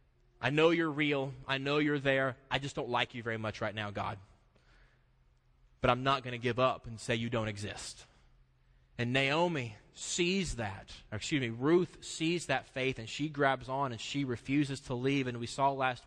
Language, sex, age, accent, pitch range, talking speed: English, male, 20-39, American, 115-150 Hz, 200 wpm